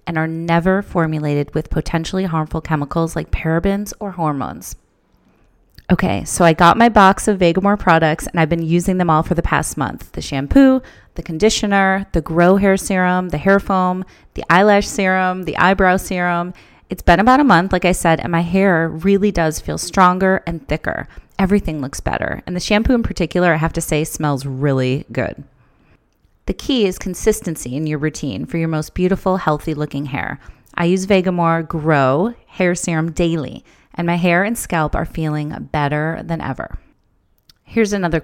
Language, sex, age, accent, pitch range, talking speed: English, female, 30-49, American, 160-190 Hz, 175 wpm